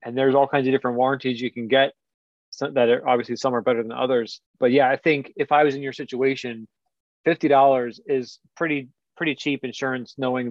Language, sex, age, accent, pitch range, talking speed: English, male, 30-49, American, 120-135 Hz, 200 wpm